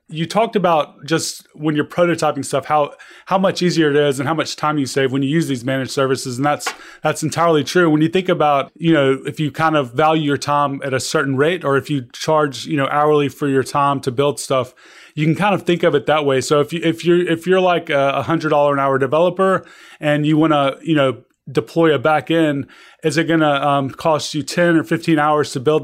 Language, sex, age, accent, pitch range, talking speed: English, male, 30-49, American, 140-160 Hz, 245 wpm